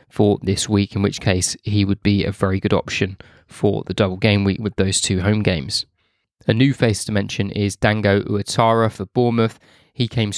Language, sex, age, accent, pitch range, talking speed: English, male, 20-39, British, 100-120 Hz, 200 wpm